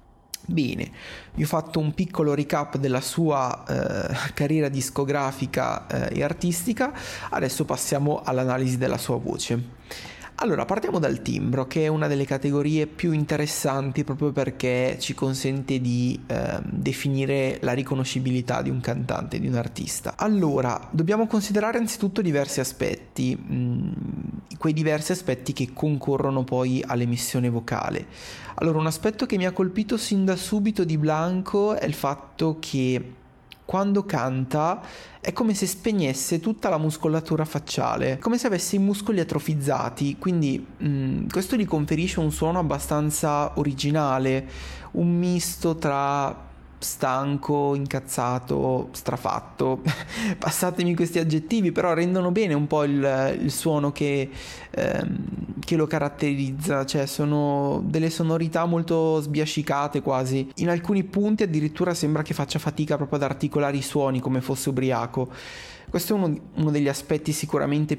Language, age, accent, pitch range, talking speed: Italian, 30-49, native, 135-170 Hz, 135 wpm